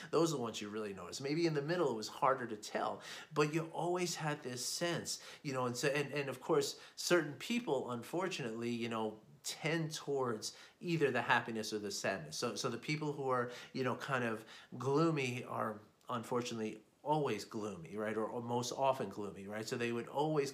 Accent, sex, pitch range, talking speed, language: American, male, 120-155 Hz, 200 wpm, English